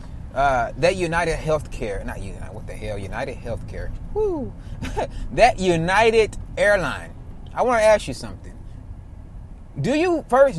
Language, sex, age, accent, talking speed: English, male, 30-49, American, 130 wpm